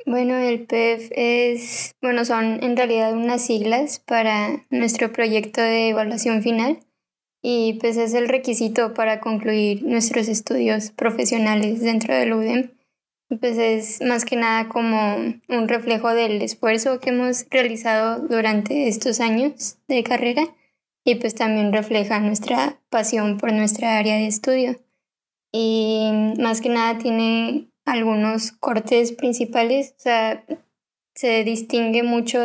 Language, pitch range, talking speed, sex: Spanish, 220-245 Hz, 130 wpm, female